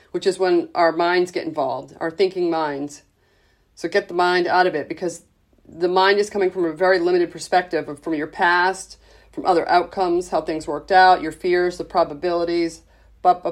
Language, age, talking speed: English, 40-59, 180 wpm